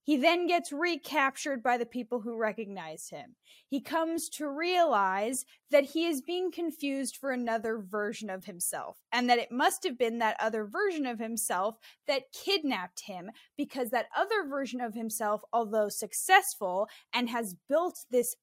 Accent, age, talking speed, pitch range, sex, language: American, 10-29, 165 wpm, 215-295 Hz, female, English